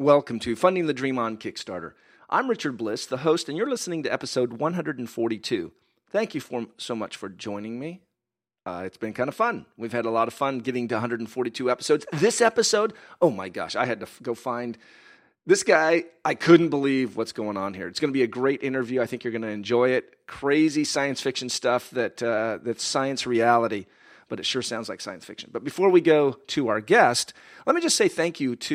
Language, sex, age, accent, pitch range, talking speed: English, male, 40-59, American, 120-155 Hz, 220 wpm